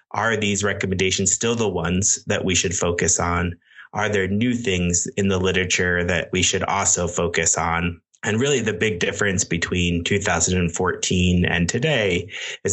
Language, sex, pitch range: English, male, 85-95 Hz